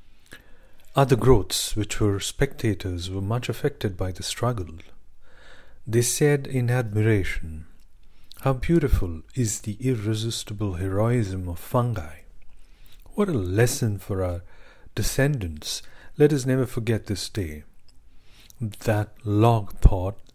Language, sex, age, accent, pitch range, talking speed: English, male, 50-69, Indian, 95-120 Hz, 110 wpm